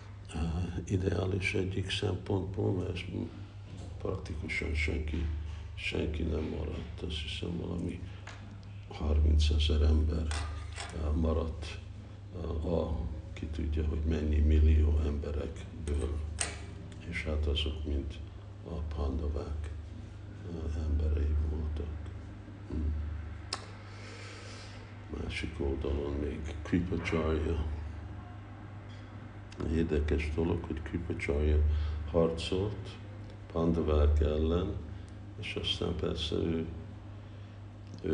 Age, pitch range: 60-79, 80-100 Hz